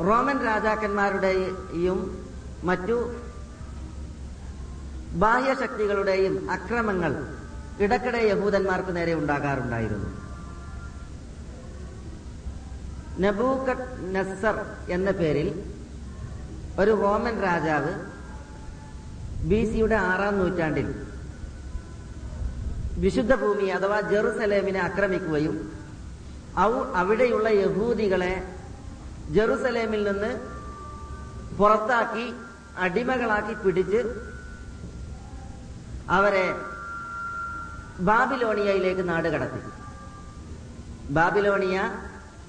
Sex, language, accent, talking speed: female, Malayalam, native, 50 wpm